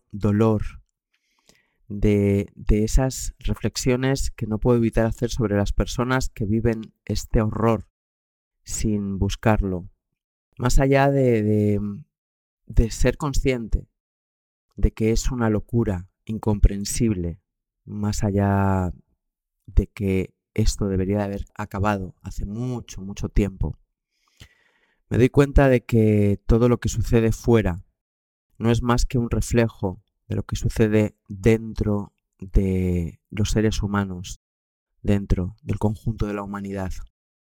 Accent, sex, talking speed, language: Spanish, male, 120 wpm, Spanish